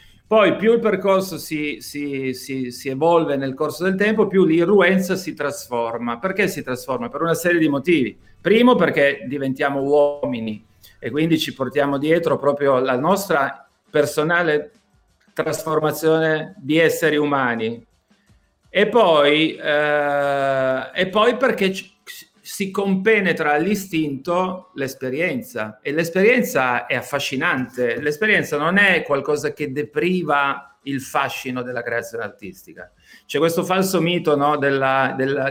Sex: male